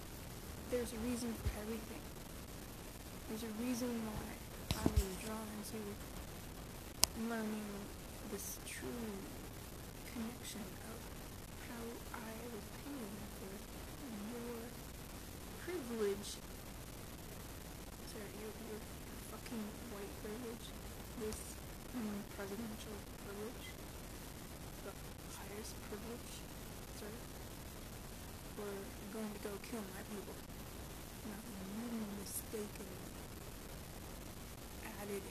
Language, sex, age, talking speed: English, female, 20-39, 80 wpm